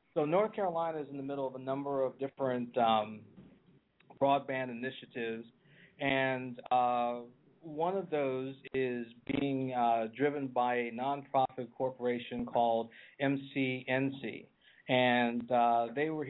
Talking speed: 125 wpm